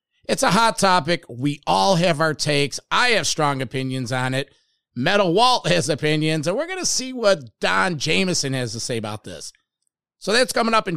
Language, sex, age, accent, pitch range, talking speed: English, male, 50-69, American, 155-195 Hz, 200 wpm